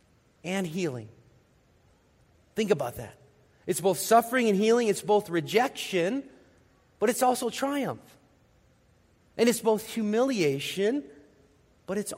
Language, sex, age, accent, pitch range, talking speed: English, male, 40-59, American, 135-195 Hz, 115 wpm